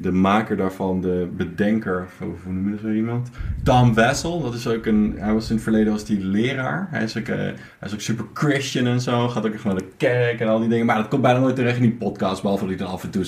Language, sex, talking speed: Dutch, male, 285 wpm